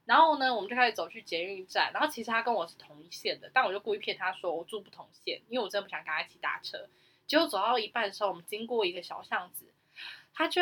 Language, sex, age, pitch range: Chinese, female, 10-29, 185-235 Hz